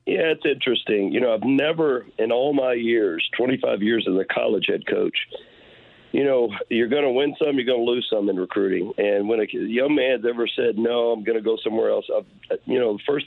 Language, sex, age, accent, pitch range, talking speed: English, male, 50-69, American, 120-150 Hz, 225 wpm